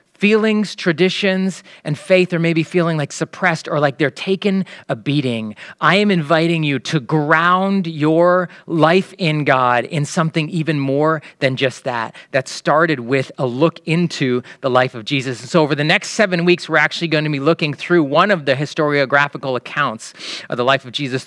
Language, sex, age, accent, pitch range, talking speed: English, male, 30-49, American, 140-180 Hz, 185 wpm